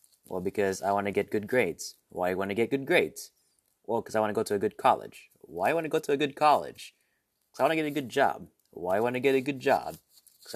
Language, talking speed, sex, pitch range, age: English, 300 wpm, male, 100-130 Hz, 20-39